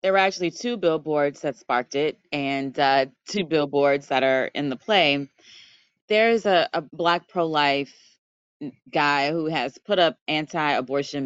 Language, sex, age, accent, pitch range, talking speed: English, female, 20-39, American, 140-175 Hz, 150 wpm